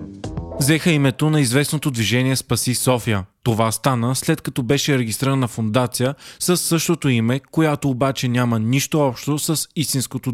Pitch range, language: 120-140 Hz, Bulgarian